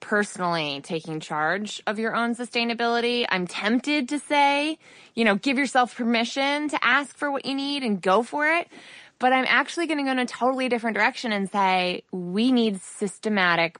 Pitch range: 185-250 Hz